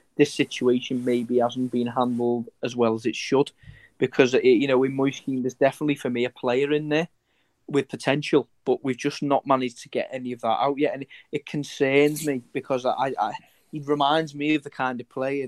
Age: 20-39